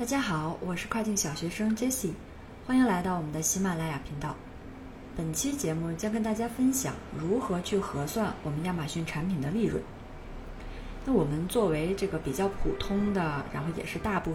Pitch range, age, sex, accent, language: 160-215 Hz, 20-39, female, native, Chinese